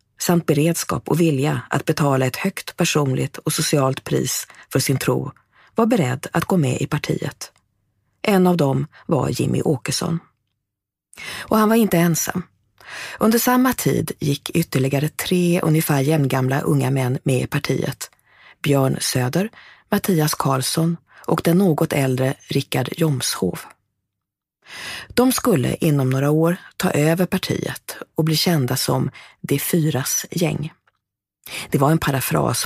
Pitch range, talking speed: 135-170 Hz, 140 wpm